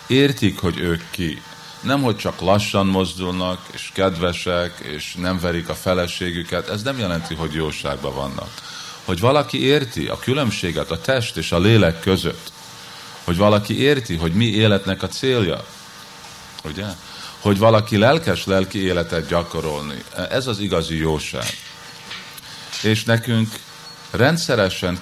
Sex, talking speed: male, 130 wpm